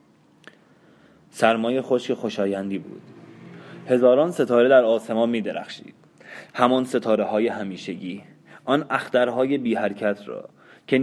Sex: male